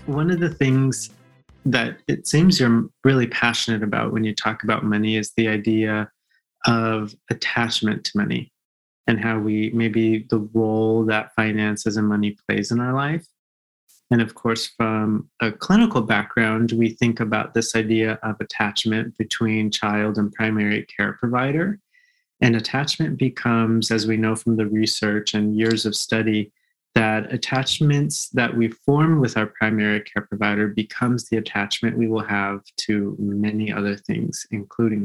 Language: English